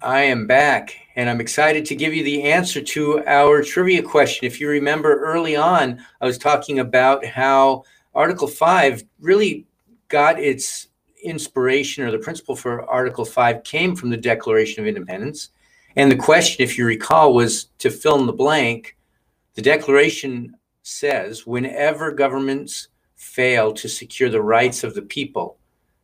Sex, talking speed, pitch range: male, 155 wpm, 115-145 Hz